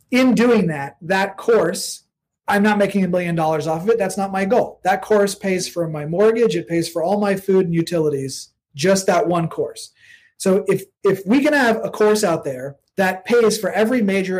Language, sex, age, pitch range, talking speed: English, male, 30-49, 170-220 Hz, 215 wpm